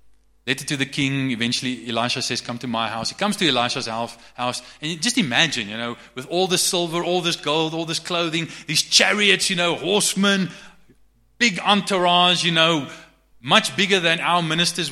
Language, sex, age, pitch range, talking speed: English, male, 30-49, 125-205 Hz, 185 wpm